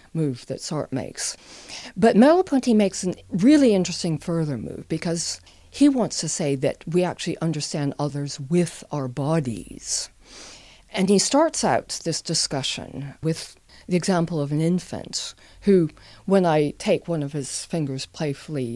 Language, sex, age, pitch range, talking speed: English, female, 50-69, 140-185 Hz, 145 wpm